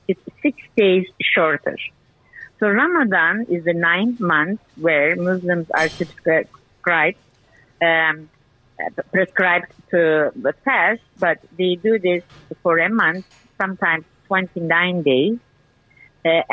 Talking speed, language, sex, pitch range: 105 wpm, English, female, 180-230 Hz